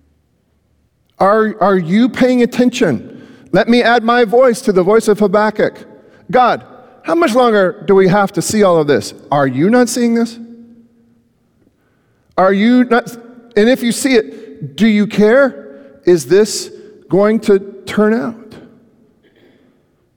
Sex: male